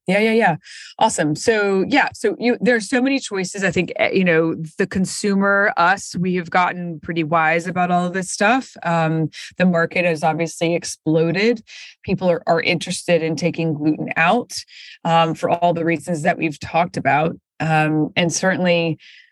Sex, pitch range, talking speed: female, 165-195 Hz, 175 wpm